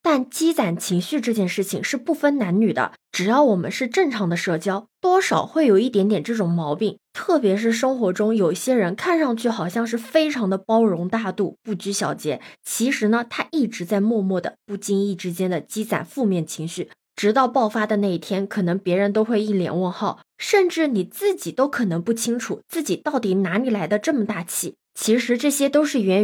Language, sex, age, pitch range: Chinese, female, 20-39, 195-265 Hz